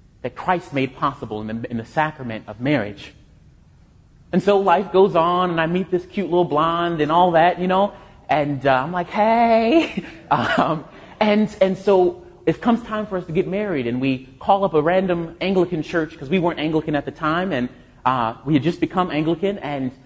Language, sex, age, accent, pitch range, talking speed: English, male, 30-49, American, 140-190 Hz, 205 wpm